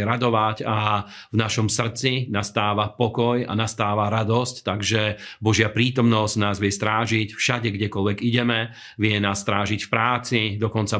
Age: 40-59